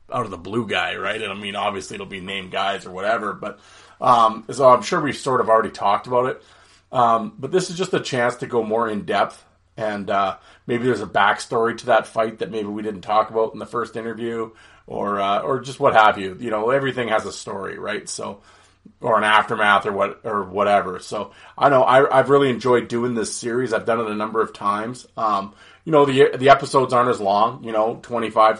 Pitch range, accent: 105-125 Hz, American